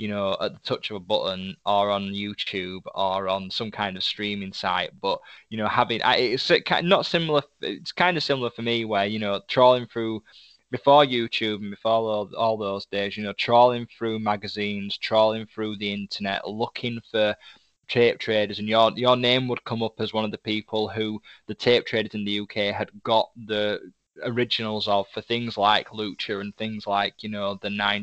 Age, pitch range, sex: 10-29, 105-120 Hz, male